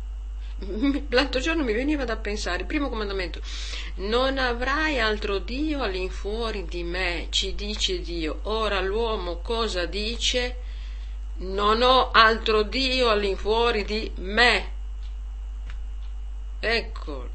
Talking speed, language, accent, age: 105 wpm, Italian, native, 50-69